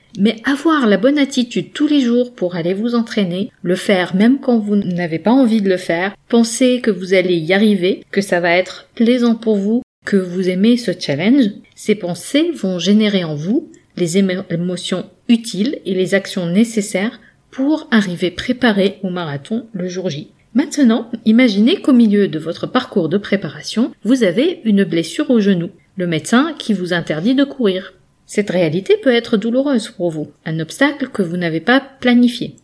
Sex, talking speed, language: female, 180 wpm, French